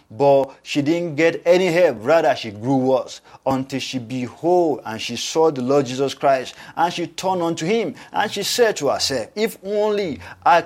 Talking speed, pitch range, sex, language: 185 wpm, 135-180 Hz, male, English